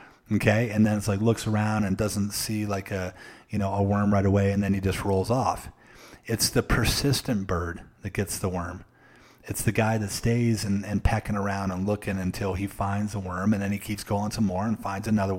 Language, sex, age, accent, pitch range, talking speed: English, male, 30-49, American, 100-120 Hz, 225 wpm